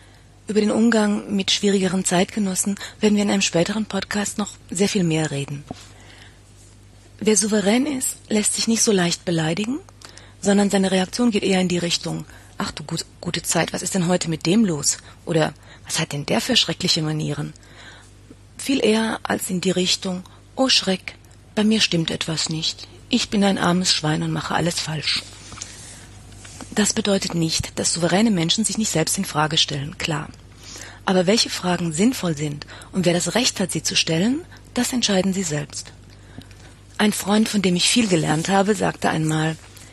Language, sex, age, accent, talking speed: German, female, 30-49, German, 175 wpm